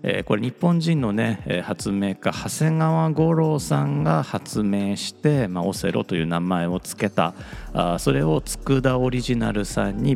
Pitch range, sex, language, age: 95-155 Hz, male, Japanese, 40-59